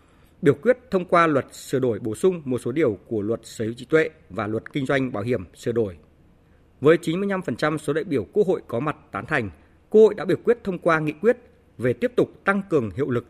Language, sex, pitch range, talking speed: Vietnamese, male, 115-175 Hz, 240 wpm